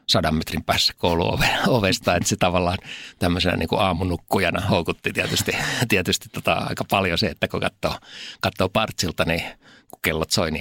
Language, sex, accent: Finnish, male, native